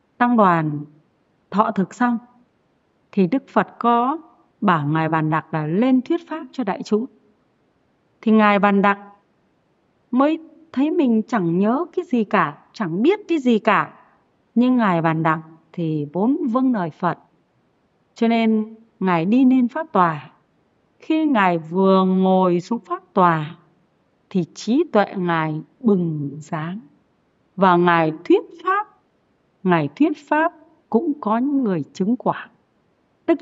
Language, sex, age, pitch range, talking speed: Vietnamese, female, 30-49, 175-265 Hz, 140 wpm